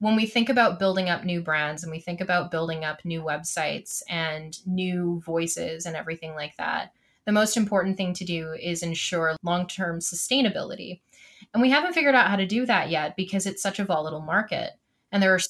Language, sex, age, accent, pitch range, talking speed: English, female, 20-39, American, 170-225 Hz, 200 wpm